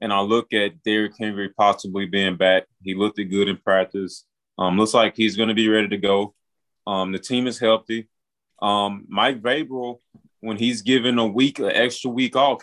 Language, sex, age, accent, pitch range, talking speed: English, male, 20-39, American, 100-130 Hz, 200 wpm